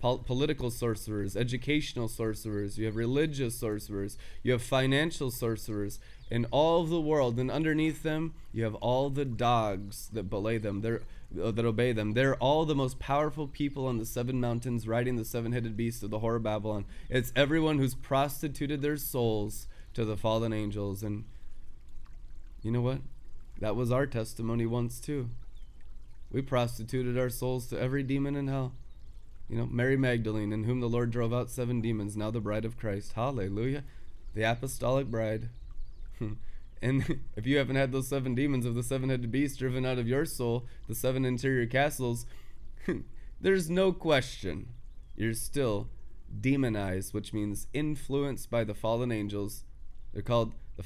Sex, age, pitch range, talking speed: male, 20-39, 110-135 Hz, 160 wpm